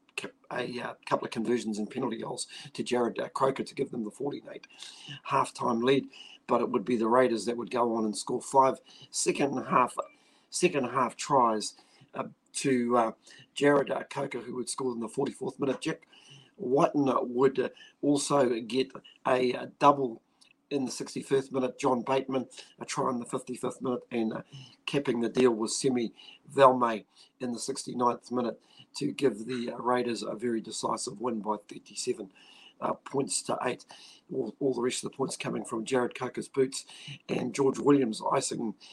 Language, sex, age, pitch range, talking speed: English, male, 40-59, 120-140 Hz, 175 wpm